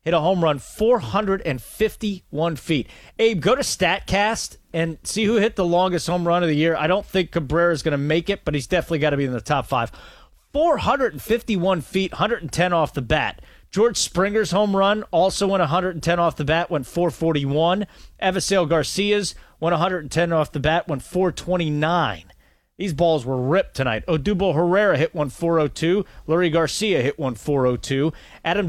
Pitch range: 150-180 Hz